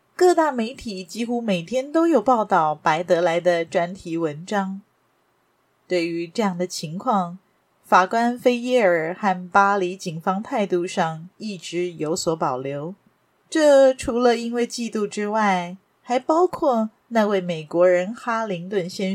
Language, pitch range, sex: Chinese, 180-245 Hz, female